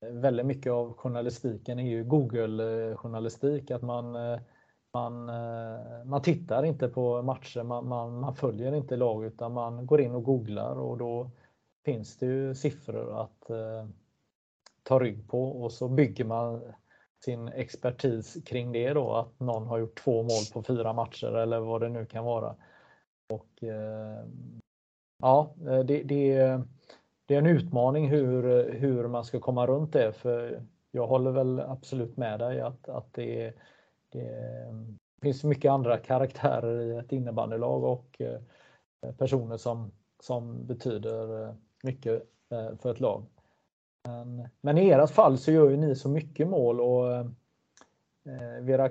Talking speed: 150 wpm